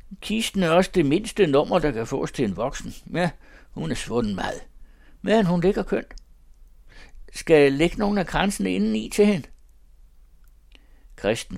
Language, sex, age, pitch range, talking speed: Danish, male, 60-79, 90-150 Hz, 160 wpm